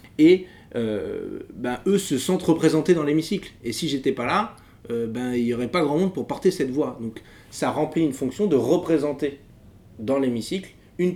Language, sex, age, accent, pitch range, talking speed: French, male, 20-39, French, 105-125 Hz, 195 wpm